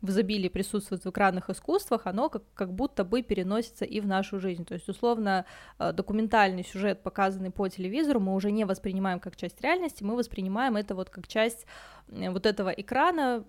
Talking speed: 180 wpm